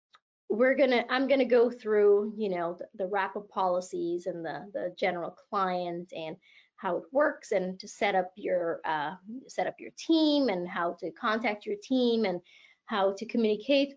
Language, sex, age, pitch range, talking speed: English, female, 30-49, 190-235 Hz, 175 wpm